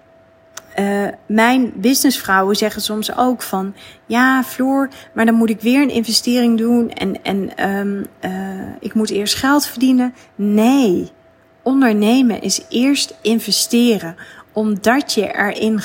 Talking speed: 130 wpm